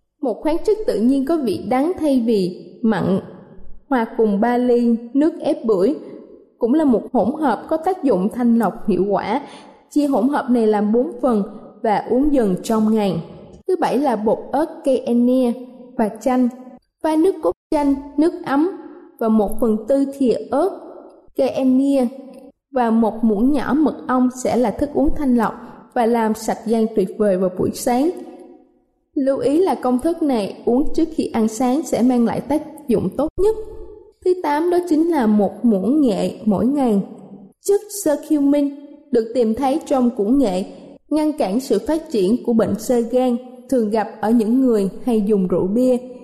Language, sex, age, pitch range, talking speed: Vietnamese, female, 20-39, 225-290 Hz, 180 wpm